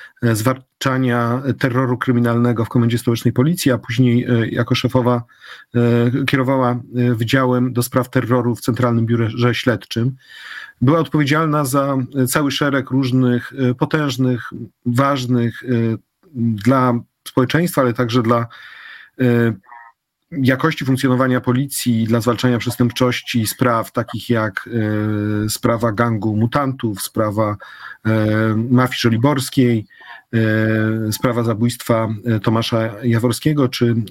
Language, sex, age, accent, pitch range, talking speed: Polish, male, 40-59, native, 115-130 Hz, 95 wpm